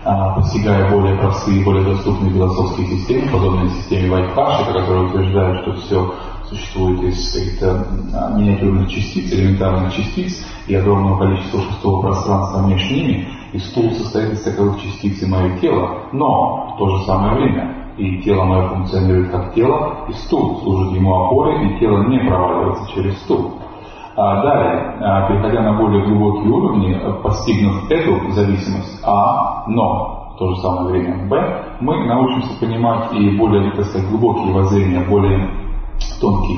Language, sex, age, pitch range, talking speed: English, male, 30-49, 95-105 Hz, 145 wpm